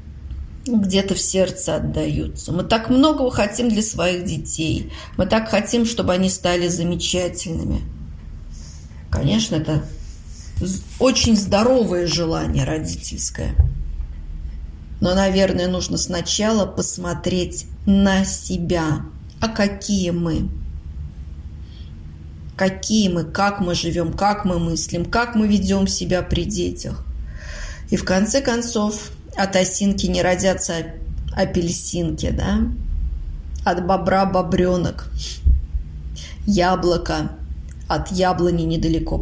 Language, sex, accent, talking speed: Russian, female, native, 100 wpm